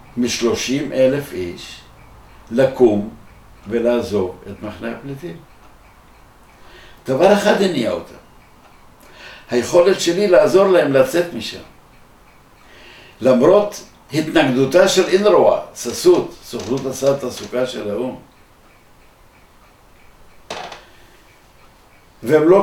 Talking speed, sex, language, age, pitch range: 80 wpm, male, Hebrew, 60-79, 115-145 Hz